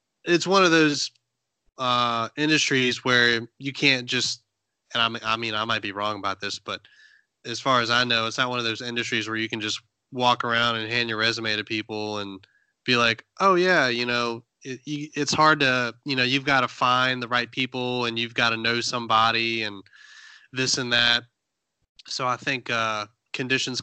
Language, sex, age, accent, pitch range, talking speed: English, male, 20-39, American, 110-125 Hz, 200 wpm